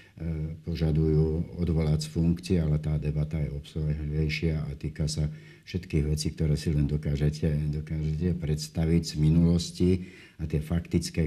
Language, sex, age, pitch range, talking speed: Slovak, male, 60-79, 75-85 Hz, 140 wpm